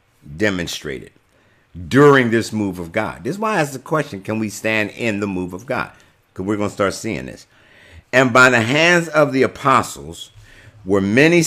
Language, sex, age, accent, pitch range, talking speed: English, male, 50-69, American, 95-120 Hz, 195 wpm